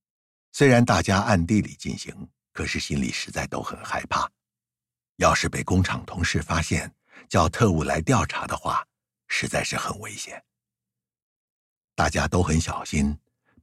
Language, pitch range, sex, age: Chinese, 70-100 Hz, male, 60-79